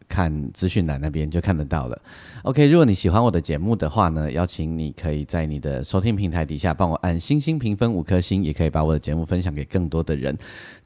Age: 30-49